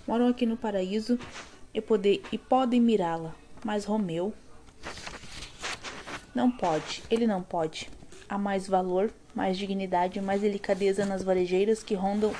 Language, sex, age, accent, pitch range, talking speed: Portuguese, female, 20-39, Brazilian, 185-215 Hz, 130 wpm